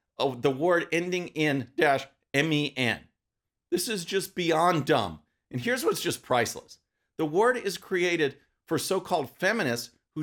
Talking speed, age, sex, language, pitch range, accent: 145 wpm, 40-59, male, English, 135-190 Hz, American